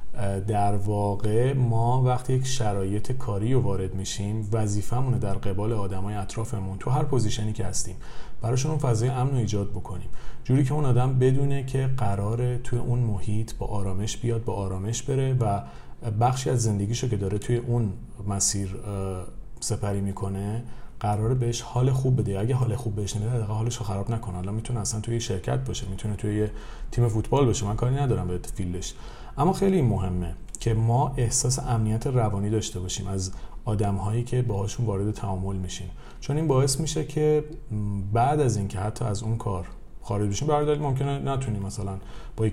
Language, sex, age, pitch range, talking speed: Persian, male, 40-59, 100-125 Hz, 170 wpm